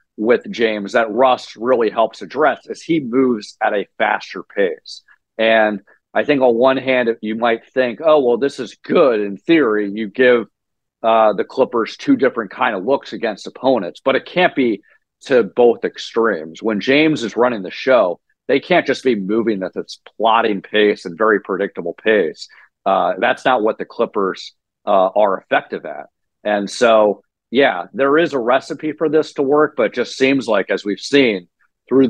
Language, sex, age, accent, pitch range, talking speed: English, male, 40-59, American, 105-135 Hz, 180 wpm